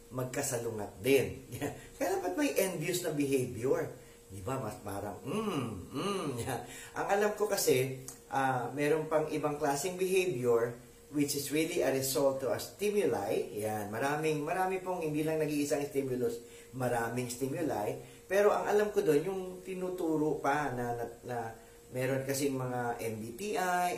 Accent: Filipino